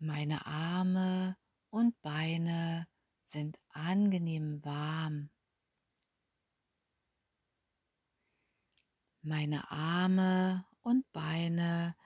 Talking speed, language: 55 wpm, German